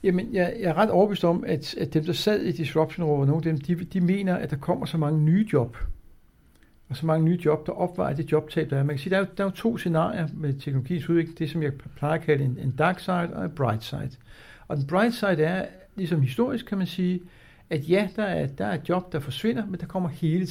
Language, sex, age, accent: Danish, male, 60-79, native